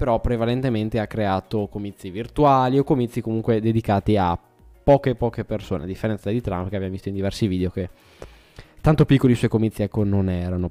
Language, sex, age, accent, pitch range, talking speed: Italian, male, 20-39, native, 105-135 Hz, 185 wpm